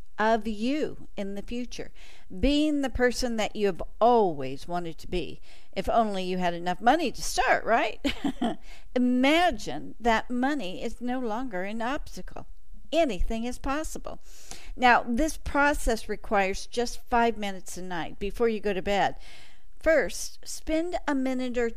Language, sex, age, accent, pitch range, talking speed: English, female, 50-69, American, 185-250 Hz, 150 wpm